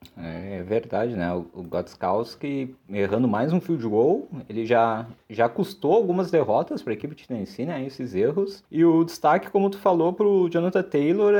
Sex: male